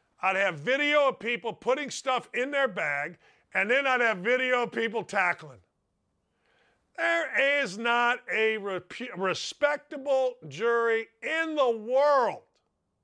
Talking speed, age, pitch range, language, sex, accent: 125 wpm, 50-69, 195-255 Hz, English, male, American